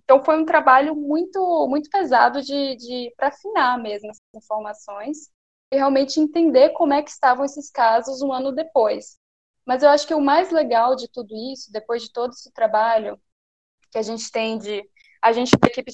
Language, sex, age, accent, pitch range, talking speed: Portuguese, female, 10-29, Brazilian, 220-285 Hz, 190 wpm